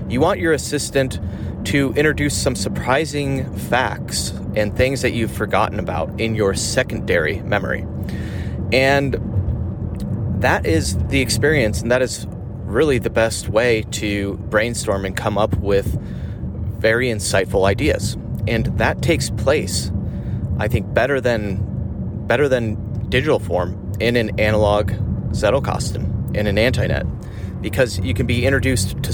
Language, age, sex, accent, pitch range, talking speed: English, 30-49, male, American, 100-120 Hz, 135 wpm